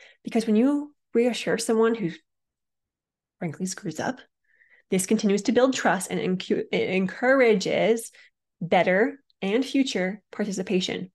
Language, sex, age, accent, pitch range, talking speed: English, female, 20-39, American, 180-240 Hz, 120 wpm